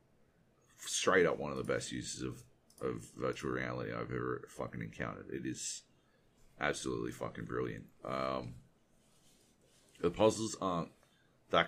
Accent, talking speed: Australian, 130 wpm